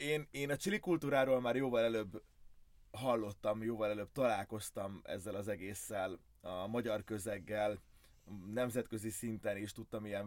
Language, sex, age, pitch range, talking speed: Hungarian, male, 20-39, 95-120 Hz, 135 wpm